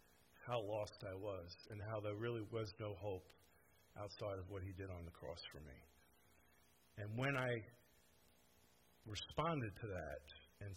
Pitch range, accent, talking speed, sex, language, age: 85-135 Hz, American, 155 wpm, male, English, 50-69